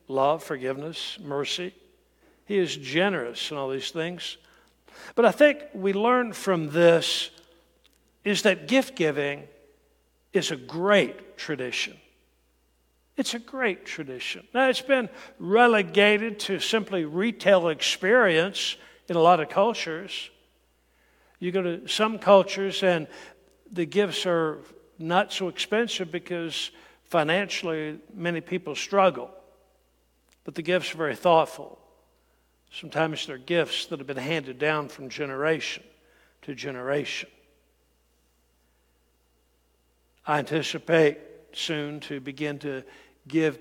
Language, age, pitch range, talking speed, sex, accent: English, 60-79, 140-190 Hz, 115 wpm, male, American